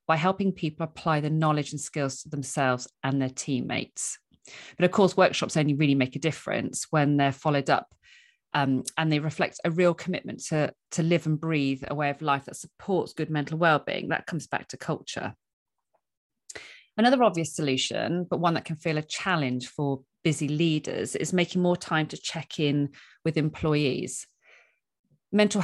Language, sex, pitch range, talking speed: English, female, 145-180 Hz, 175 wpm